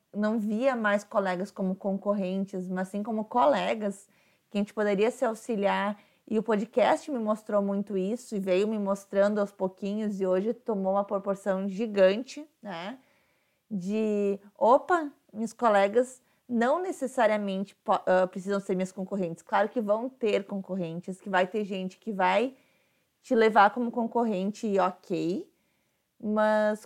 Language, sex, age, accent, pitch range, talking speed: Portuguese, female, 20-39, Brazilian, 190-230 Hz, 145 wpm